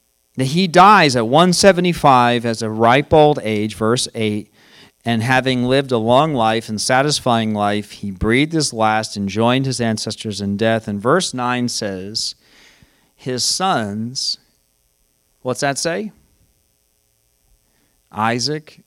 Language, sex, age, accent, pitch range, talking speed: English, male, 40-59, American, 110-140 Hz, 130 wpm